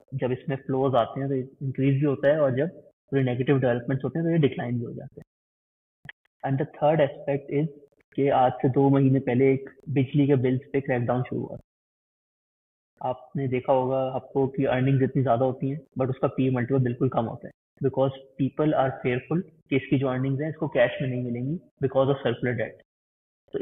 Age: 20-39